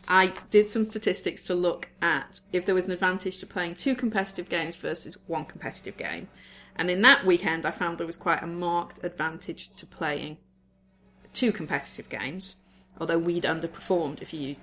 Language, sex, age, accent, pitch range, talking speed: English, female, 30-49, British, 165-205 Hz, 180 wpm